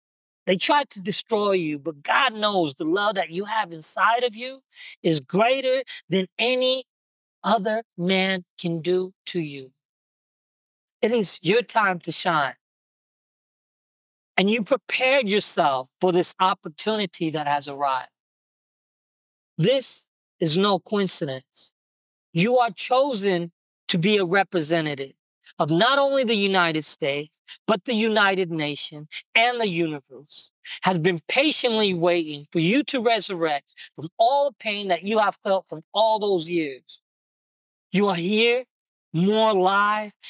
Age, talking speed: 40-59, 135 wpm